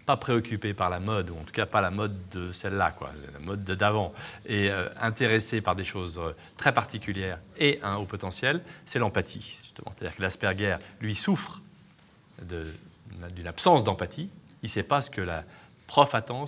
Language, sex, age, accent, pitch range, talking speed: French, male, 30-49, French, 100-145 Hz, 180 wpm